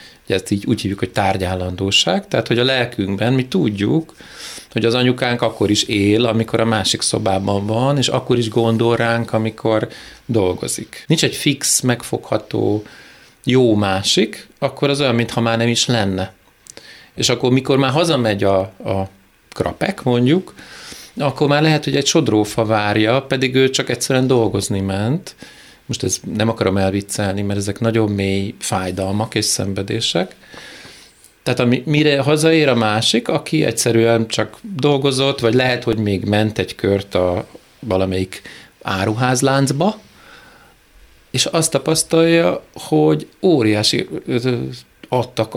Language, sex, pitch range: Hungarian, male, 105-130 Hz